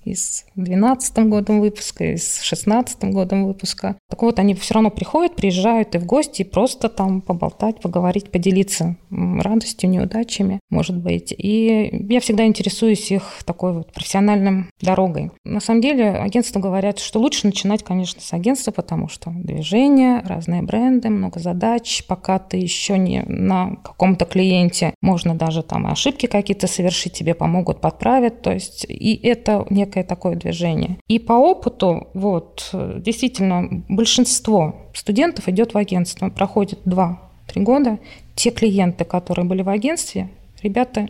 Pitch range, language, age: 185-225 Hz, Russian, 20-39